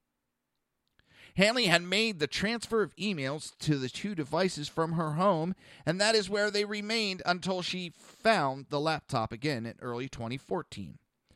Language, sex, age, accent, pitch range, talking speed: English, male, 40-59, American, 150-215 Hz, 155 wpm